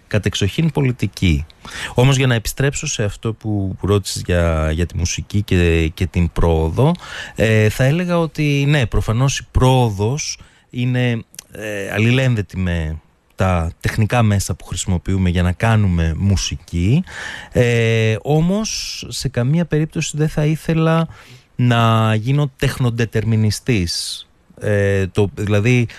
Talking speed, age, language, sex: 120 wpm, 30-49, Greek, male